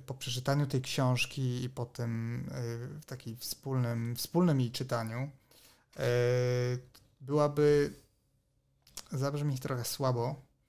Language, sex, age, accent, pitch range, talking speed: Polish, male, 30-49, native, 125-150 Hz, 95 wpm